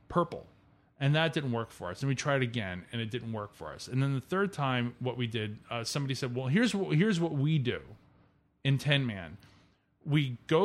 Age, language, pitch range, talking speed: 30-49, English, 120-155 Hz, 225 wpm